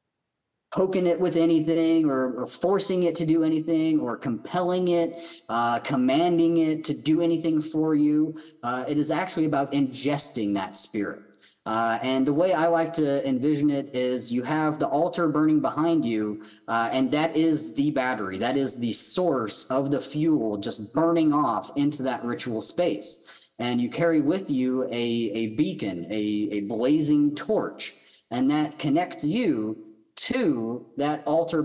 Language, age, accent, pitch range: English, 40-59, American, 115-160 Hz